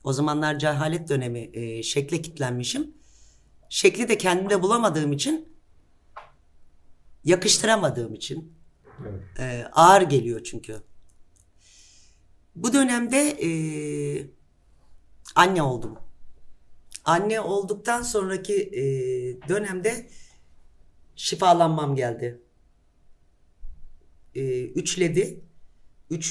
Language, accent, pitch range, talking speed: Turkish, native, 120-190 Hz, 75 wpm